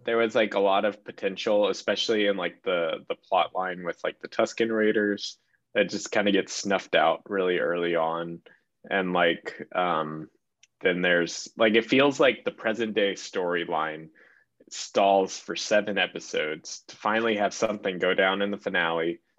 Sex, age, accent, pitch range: male, 20-39, American, 90-110 Hz